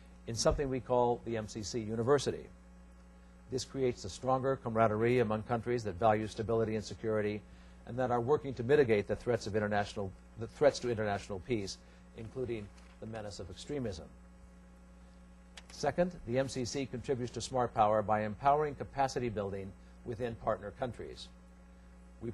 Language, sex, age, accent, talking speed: English, male, 60-79, American, 135 wpm